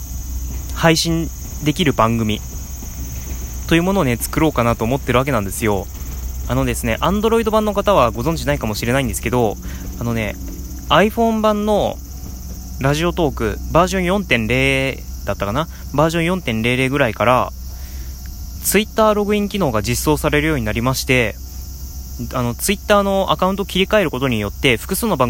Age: 20-39